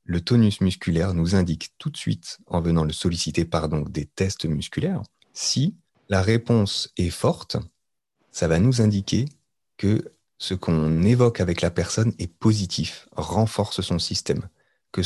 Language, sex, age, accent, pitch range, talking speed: French, male, 30-49, French, 85-115 Hz, 155 wpm